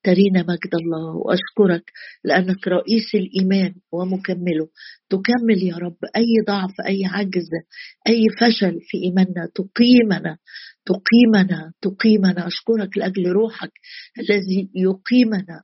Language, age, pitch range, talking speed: Arabic, 50-69, 185-220 Hz, 105 wpm